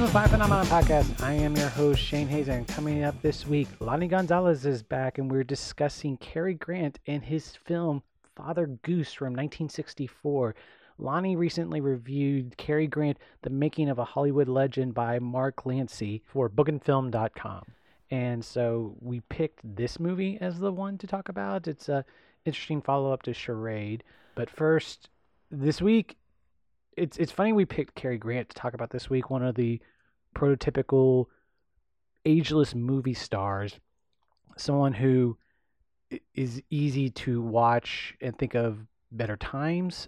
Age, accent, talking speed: 30-49, American, 145 wpm